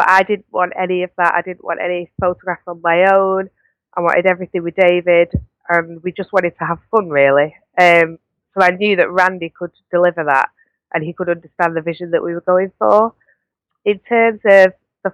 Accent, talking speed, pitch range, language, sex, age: British, 200 wpm, 165-185 Hz, English, female, 20-39